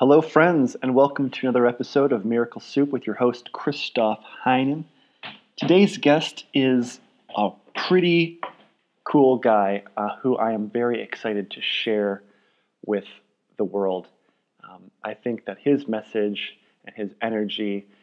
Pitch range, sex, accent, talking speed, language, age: 110-130 Hz, male, American, 140 wpm, English, 30-49